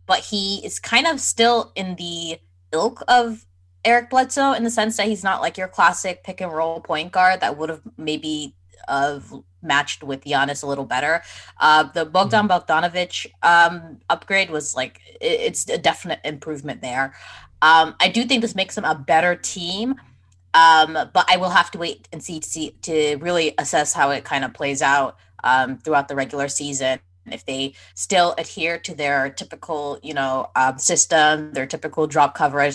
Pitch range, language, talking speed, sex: 140-180 Hz, English, 180 wpm, female